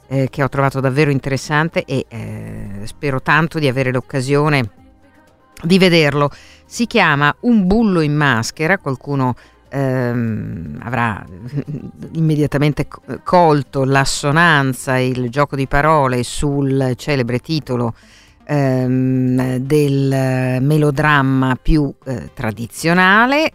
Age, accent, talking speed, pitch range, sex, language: 50-69, native, 100 wpm, 120-155 Hz, female, Italian